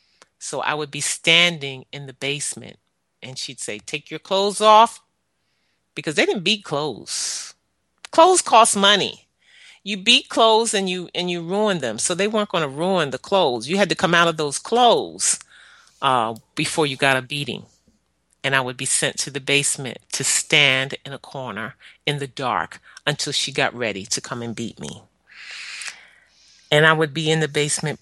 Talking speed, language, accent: 185 wpm, English, American